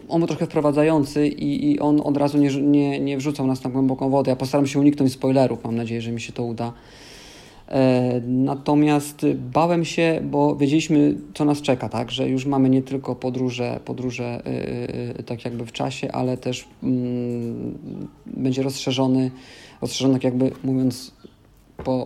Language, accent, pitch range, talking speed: Polish, native, 125-145 Hz, 165 wpm